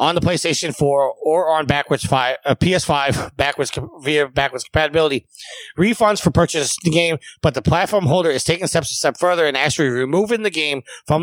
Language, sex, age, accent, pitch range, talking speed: English, male, 30-49, American, 135-170 Hz, 200 wpm